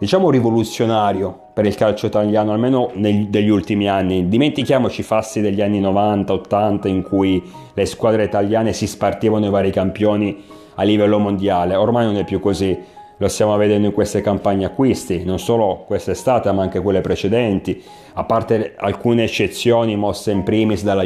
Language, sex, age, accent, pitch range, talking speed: Italian, male, 30-49, native, 100-115 Hz, 160 wpm